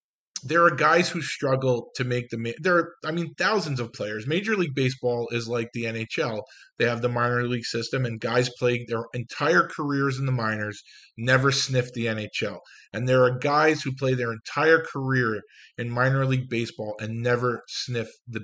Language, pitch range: English, 125-165 Hz